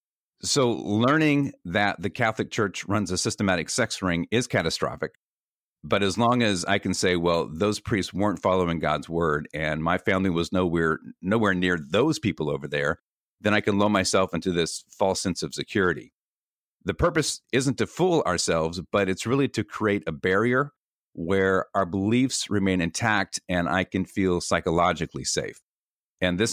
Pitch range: 85-110 Hz